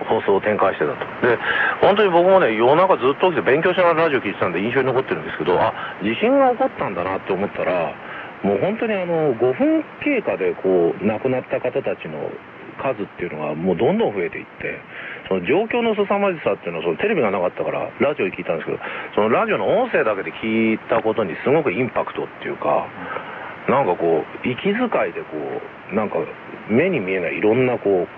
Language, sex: Korean, male